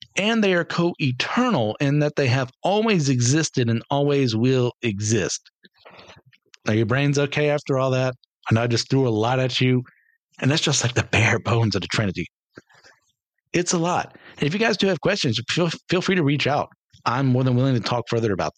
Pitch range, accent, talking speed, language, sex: 125-165 Hz, American, 205 wpm, English, male